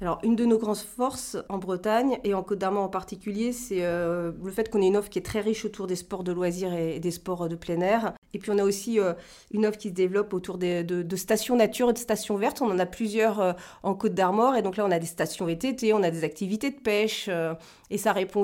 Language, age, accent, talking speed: French, 40-59, French, 280 wpm